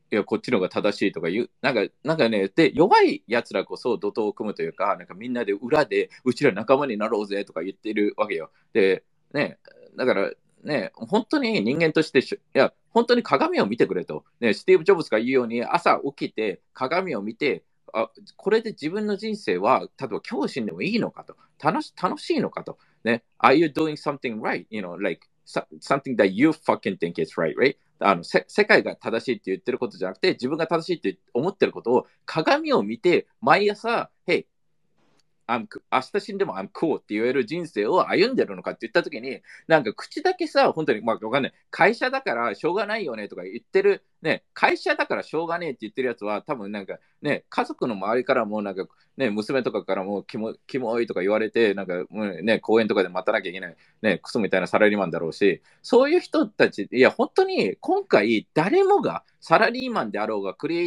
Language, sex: Japanese, male